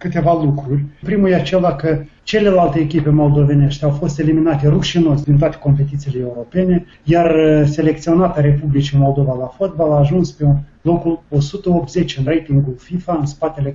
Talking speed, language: 150 wpm, Romanian